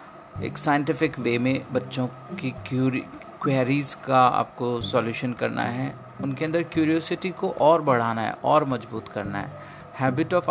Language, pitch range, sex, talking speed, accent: Hindi, 120-165 Hz, male, 150 wpm, native